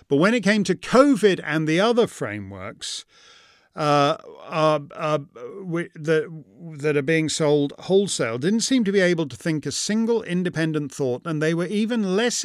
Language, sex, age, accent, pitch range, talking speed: English, male, 50-69, British, 140-195 Hz, 165 wpm